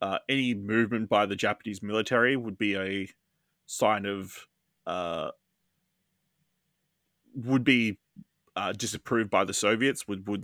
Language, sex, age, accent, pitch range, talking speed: English, male, 20-39, Australian, 100-130 Hz, 125 wpm